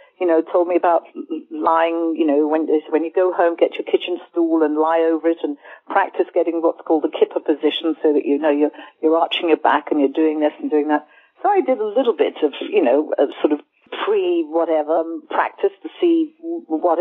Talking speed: 220 wpm